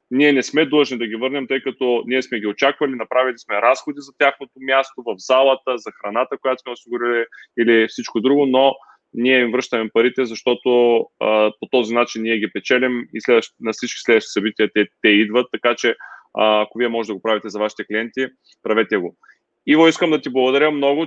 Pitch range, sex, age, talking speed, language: 115-135 Hz, male, 20-39, 200 wpm, Bulgarian